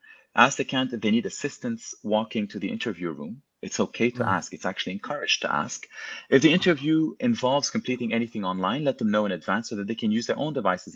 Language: English